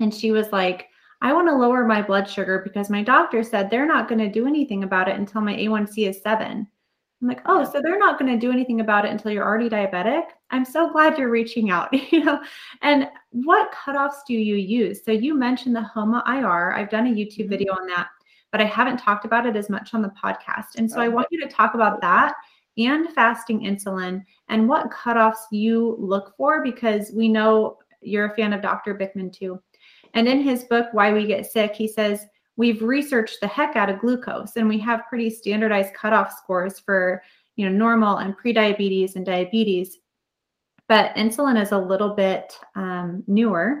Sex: female